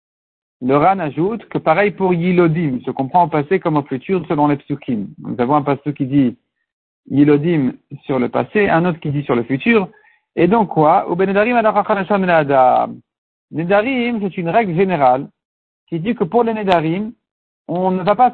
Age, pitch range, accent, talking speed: 60-79, 165-210 Hz, French, 165 wpm